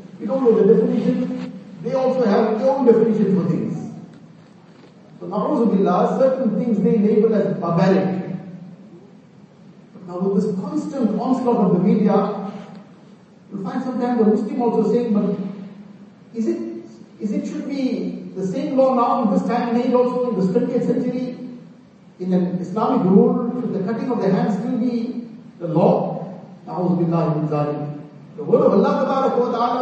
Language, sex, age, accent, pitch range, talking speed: English, male, 50-69, Indian, 190-235 Hz, 160 wpm